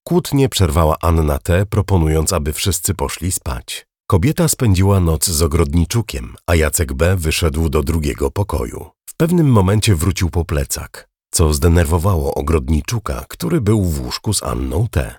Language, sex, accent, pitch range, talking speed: Polish, male, native, 75-100 Hz, 145 wpm